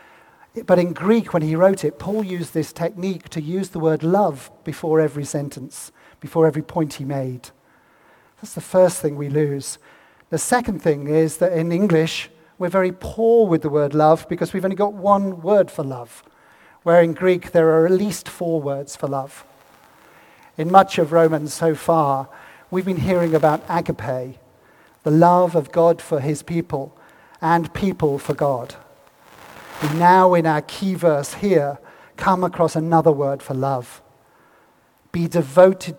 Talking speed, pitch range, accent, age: 165 wpm, 145-175 Hz, British, 50-69